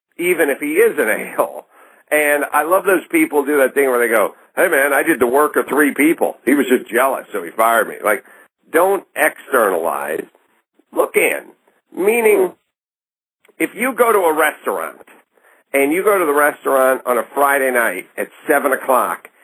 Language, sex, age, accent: English, male, 50-69, American